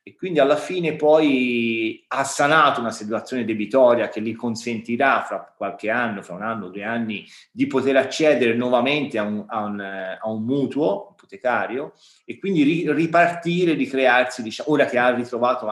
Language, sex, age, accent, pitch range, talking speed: Italian, male, 30-49, native, 110-150 Hz, 165 wpm